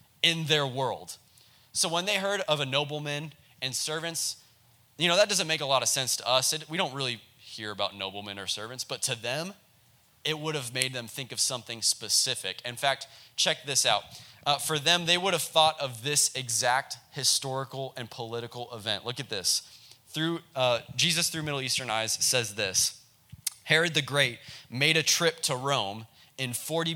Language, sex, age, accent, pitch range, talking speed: English, male, 20-39, American, 120-155 Hz, 185 wpm